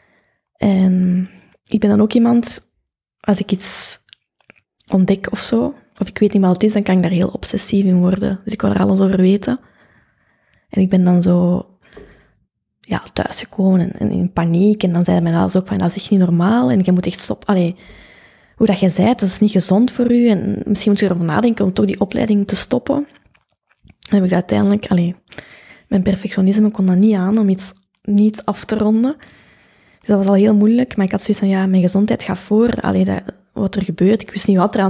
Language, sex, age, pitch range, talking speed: Dutch, female, 20-39, 180-210 Hz, 215 wpm